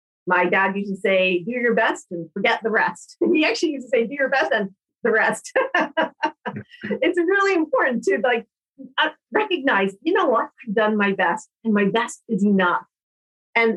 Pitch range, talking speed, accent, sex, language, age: 200-285 Hz, 185 wpm, American, female, English, 50-69